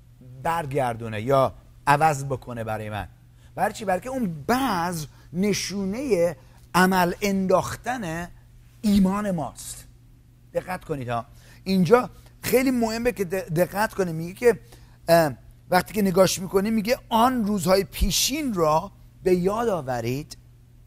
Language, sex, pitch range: English, male, 135-210 Hz